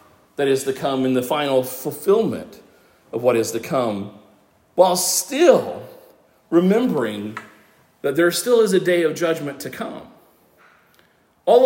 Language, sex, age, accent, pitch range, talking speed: English, male, 40-59, American, 130-185 Hz, 140 wpm